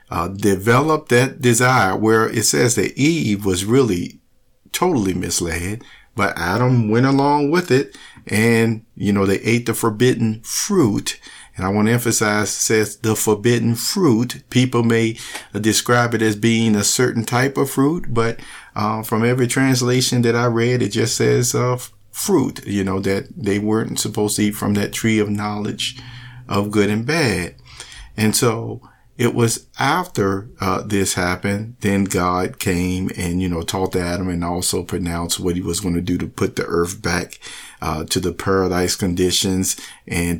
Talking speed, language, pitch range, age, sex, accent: 170 wpm, English, 95-125 Hz, 50-69, male, American